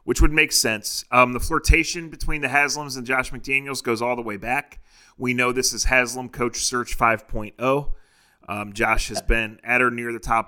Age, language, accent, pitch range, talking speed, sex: 30-49, English, American, 110-130 Hz, 200 wpm, male